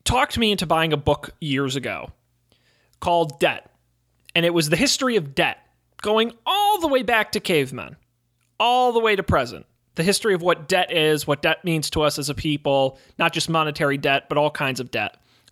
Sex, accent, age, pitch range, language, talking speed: male, American, 30-49, 150-225 Hz, English, 205 wpm